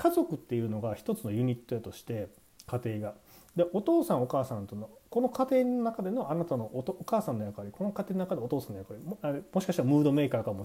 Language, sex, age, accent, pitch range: Japanese, male, 40-59, native, 105-165 Hz